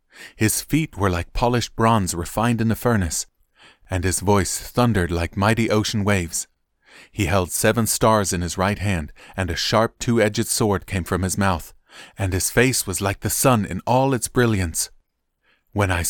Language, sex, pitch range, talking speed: English, male, 85-105 Hz, 180 wpm